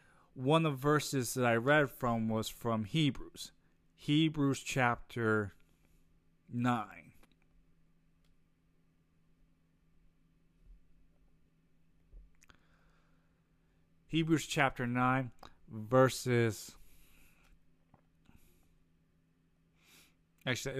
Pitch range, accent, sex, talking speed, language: 85-135 Hz, American, male, 55 wpm, English